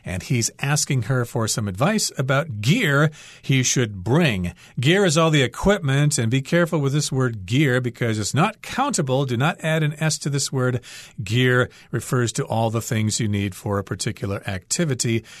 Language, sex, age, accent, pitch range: Chinese, male, 40-59, American, 115-160 Hz